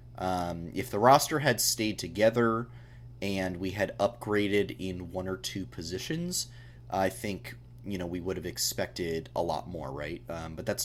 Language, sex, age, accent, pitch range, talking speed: English, male, 30-49, American, 100-125 Hz, 170 wpm